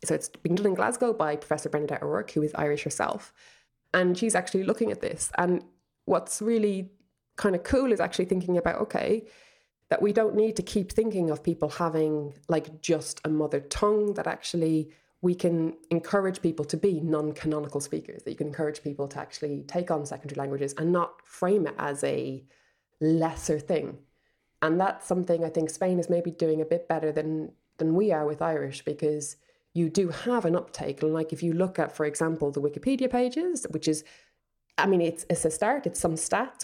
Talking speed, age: 200 wpm, 20-39